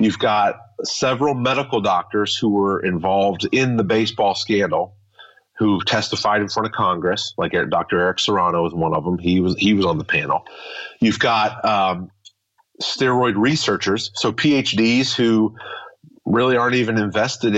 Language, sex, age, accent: English, male, 30-49, American